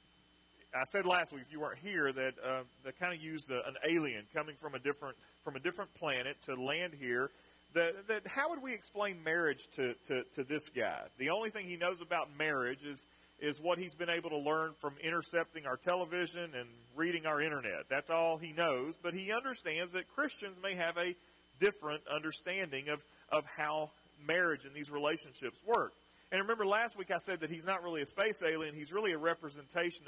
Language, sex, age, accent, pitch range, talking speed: English, male, 40-59, American, 140-185 Hz, 205 wpm